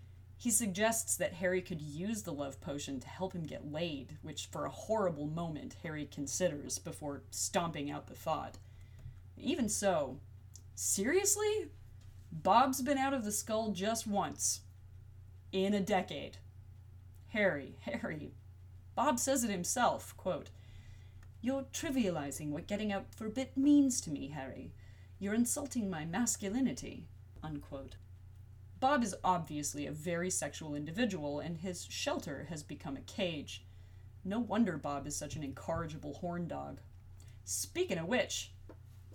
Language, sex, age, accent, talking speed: English, female, 30-49, American, 140 wpm